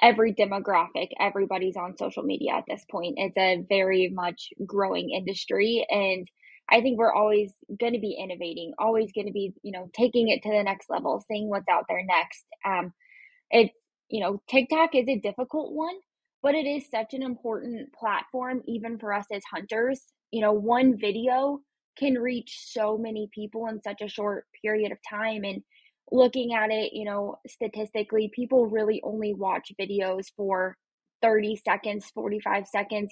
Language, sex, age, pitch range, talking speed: English, female, 10-29, 205-245 Hz, 170 wpm